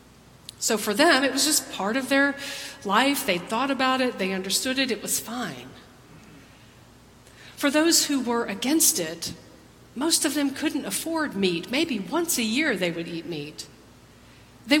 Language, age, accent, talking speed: English, 40-59, American, 165 wpm